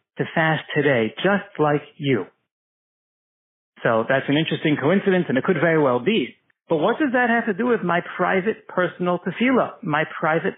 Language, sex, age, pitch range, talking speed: English, male, 60-79, 145-180 Hz, 175 wpm